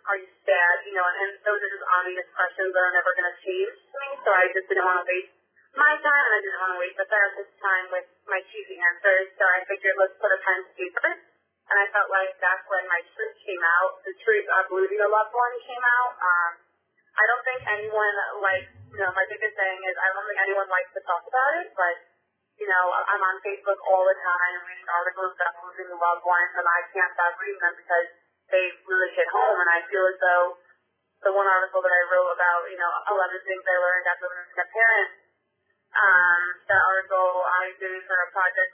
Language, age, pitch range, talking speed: English, 20-39, 180-200 Hz, 225 wpm